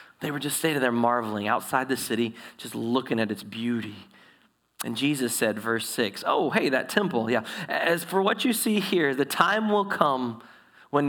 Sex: male